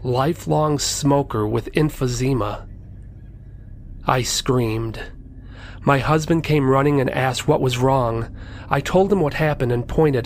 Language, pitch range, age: English, 105-150 Hz, 40-59